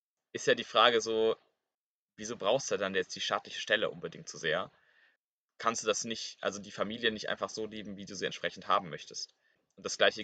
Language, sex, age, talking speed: German, male, 20-39, 210 wpm